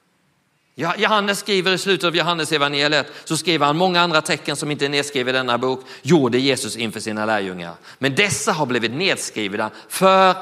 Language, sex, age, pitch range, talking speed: Swedish, male, 40-59, 160-260 Hz, 185 wpm